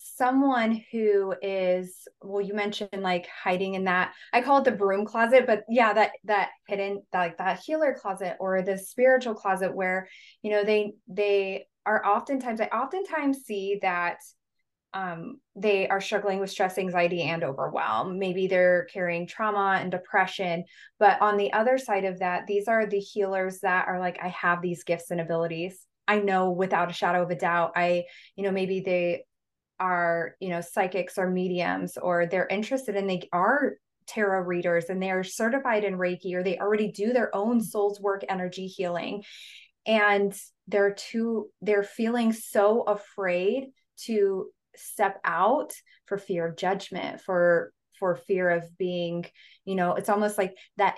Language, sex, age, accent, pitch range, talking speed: English, female, 20-39, American, 180-210 Hz, 170 wpm